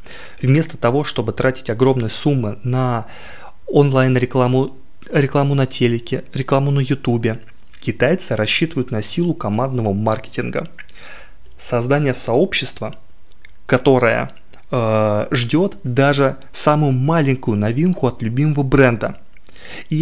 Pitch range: 115-145 Hz